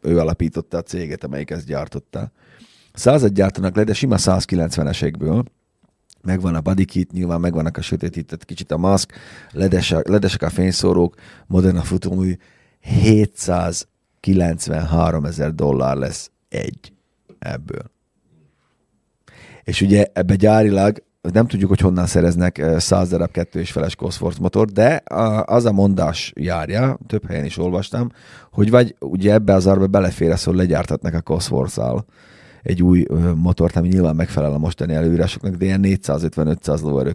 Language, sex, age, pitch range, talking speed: Hungarian, male, 30-49, 80-100 Hz, 140 wpm